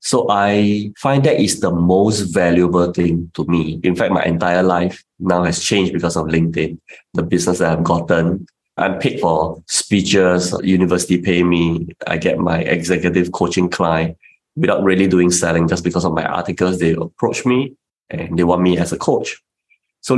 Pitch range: 85-100 Hz